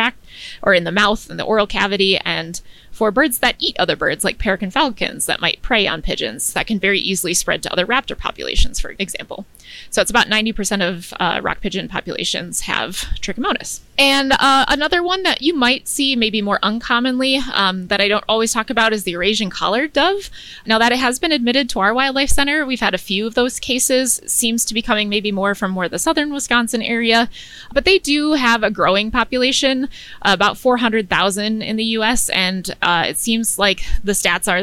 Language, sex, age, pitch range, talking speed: English, female, 20-39, 195-245 Hz, 205 wpm